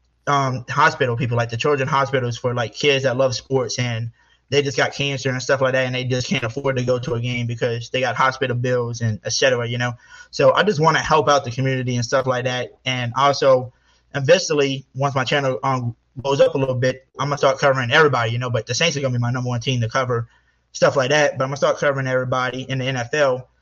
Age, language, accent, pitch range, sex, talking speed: 20-39, English, American, 125-145 Hz, male, 245 wpm